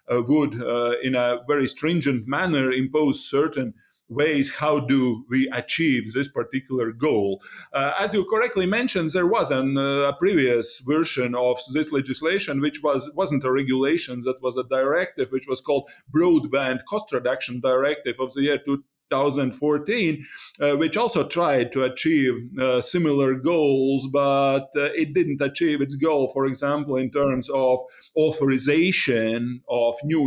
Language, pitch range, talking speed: English, 130-150 Hz, 155 wpm